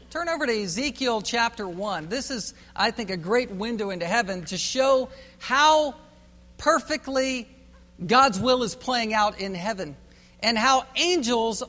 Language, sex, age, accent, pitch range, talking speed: English, male, 50-69, American, 185-245 Hz, 150 wpm